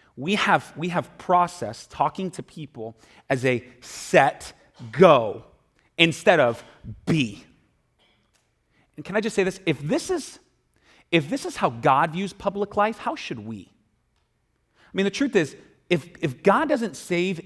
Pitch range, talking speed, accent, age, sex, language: 145-225 Hz, 155 wpm, American, 30-49, male, English